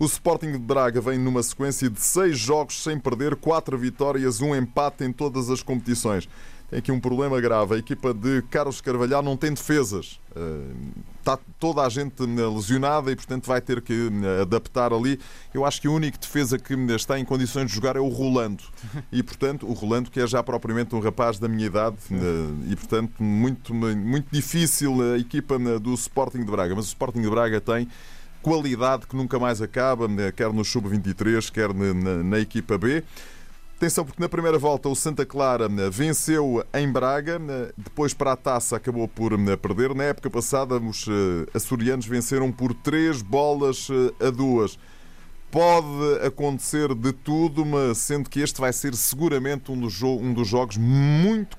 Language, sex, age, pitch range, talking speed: Portuguese, male, 20-39, 115-140 Hz, 175 wpm